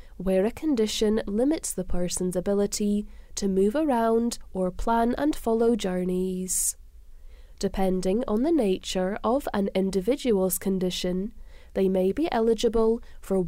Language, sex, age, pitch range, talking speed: English, female, 10-29, 185-230 Hz, 125 wpm